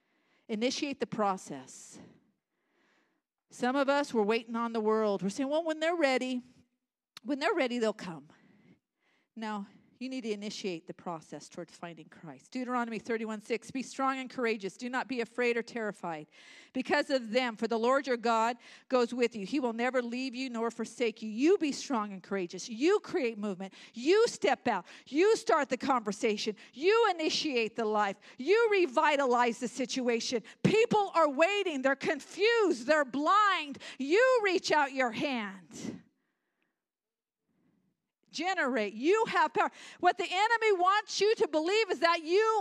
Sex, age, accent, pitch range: female, 50-69, American, 235-360 Hz